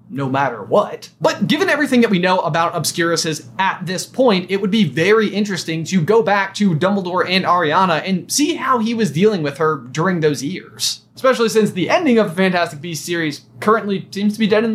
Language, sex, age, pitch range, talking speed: English, male, 20-39, 165-225 Hz, 210 wpm